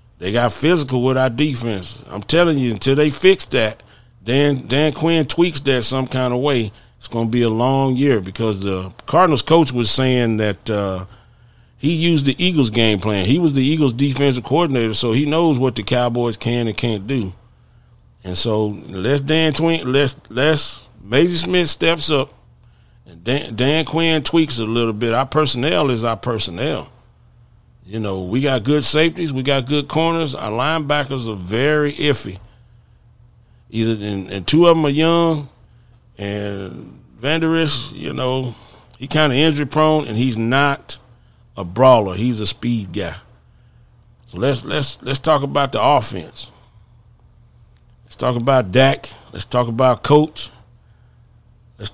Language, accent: English, American